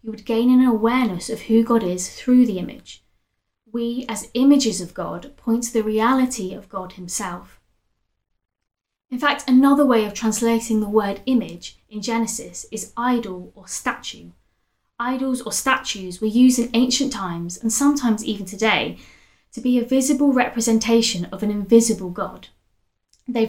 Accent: British